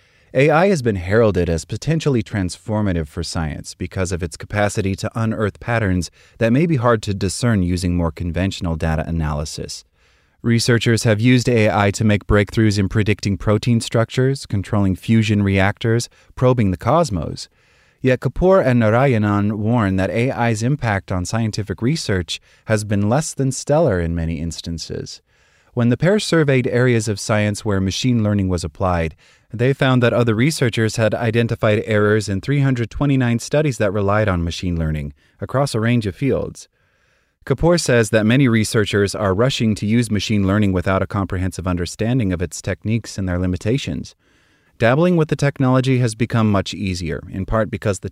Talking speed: 160 wpm